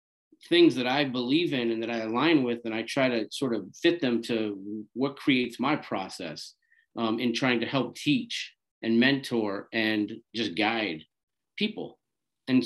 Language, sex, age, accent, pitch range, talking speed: English, male, 40-59, American, 115-150 Hz, 170 wpm